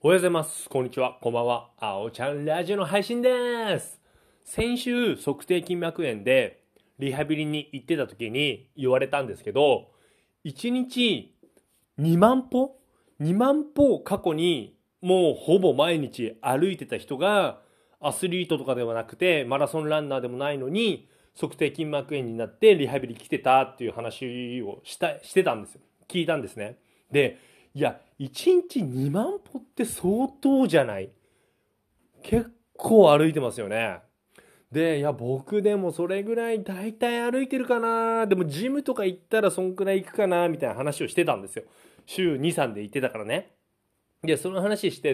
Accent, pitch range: native, 145-230 Hz